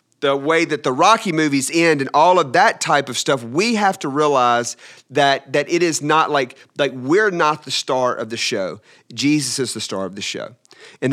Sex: male